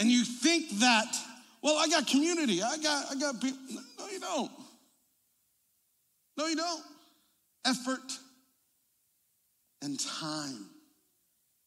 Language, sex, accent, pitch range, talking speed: English, male, American, 170-280 Hz, 115 wpm